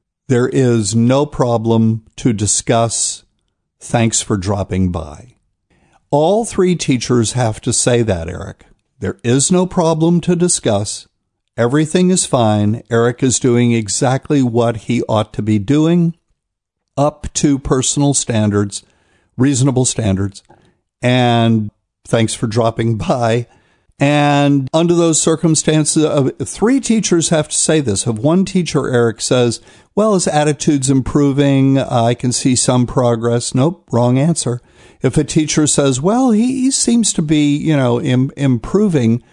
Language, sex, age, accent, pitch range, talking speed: English, male, 50-69, American, 115-150 Hz, 135 wpm